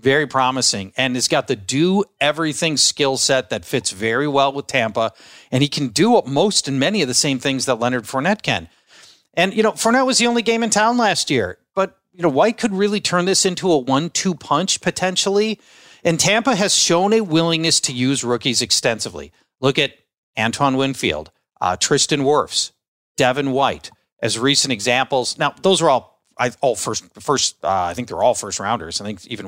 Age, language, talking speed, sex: 40-59, English, 190 wpm, male